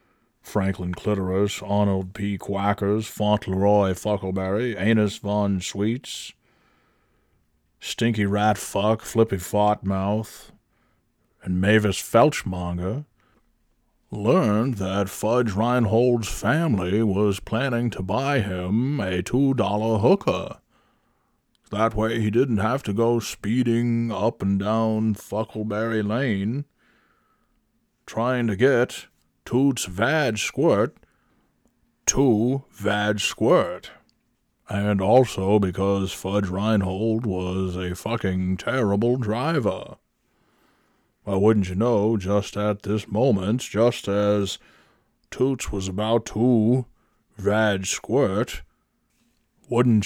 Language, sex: English, male